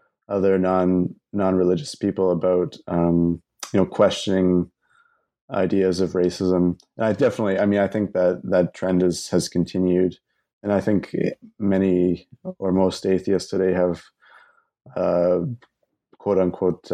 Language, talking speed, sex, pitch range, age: English, 135 wpm, male, 90-100 Hz, 20-39